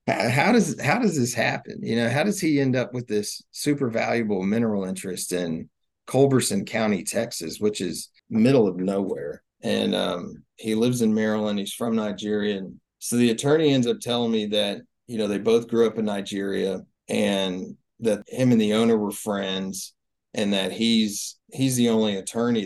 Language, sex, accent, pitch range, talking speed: English, male, American, 100-120 Hz, 185 wpm